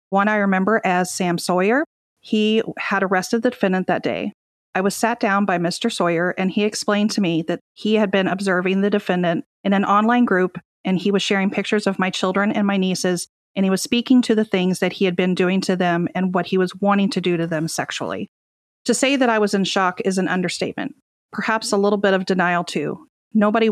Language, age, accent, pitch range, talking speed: English, 40-59, American, 180-205 Hz, 225 wpm